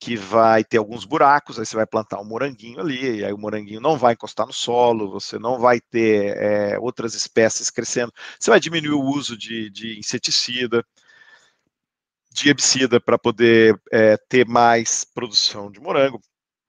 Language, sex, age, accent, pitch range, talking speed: Portuguese, male, 50-69, Brazilian, 115-140 Hz, 170 wpm